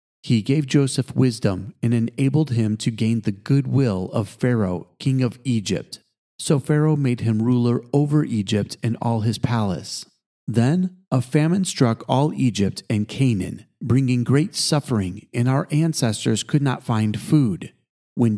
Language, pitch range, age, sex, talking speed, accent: English, 115-145 Hz, 40-59, male, 150 wpm, American